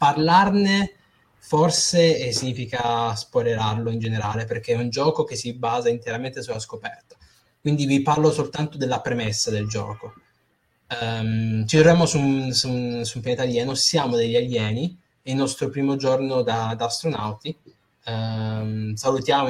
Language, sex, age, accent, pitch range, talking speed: Italian, male, 20-39, native, 115-160 Hz, 130 wpm